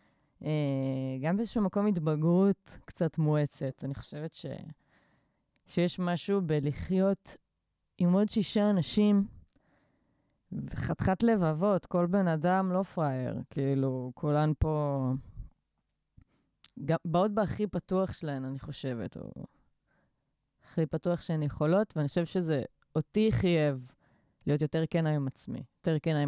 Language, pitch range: Hebrew, 150-190 Hz